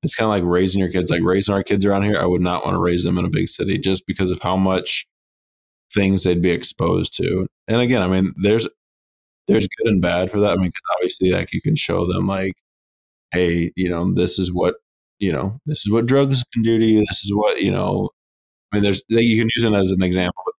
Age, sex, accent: 20-39, male, American